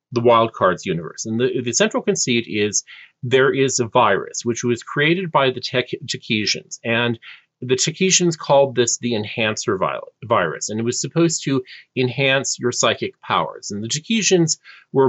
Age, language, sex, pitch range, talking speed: 40-59, English, male, 120-155 Hz, 165 wpm